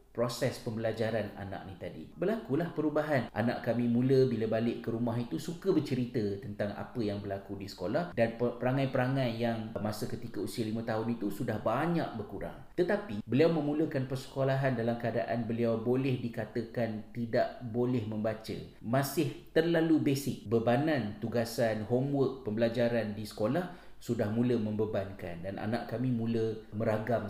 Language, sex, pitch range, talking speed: Malay, male, 110-135 Hz, 140 wpm